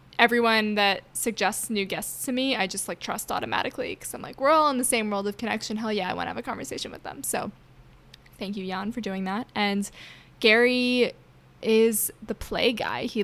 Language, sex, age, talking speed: English, female, 10-29, 215 wpm